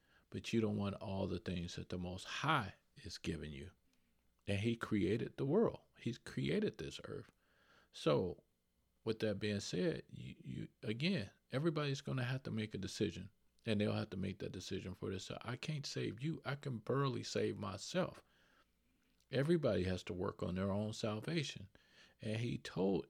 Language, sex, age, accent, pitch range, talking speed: English, male, 40-59, American, 90-115 Hz, 180 wpm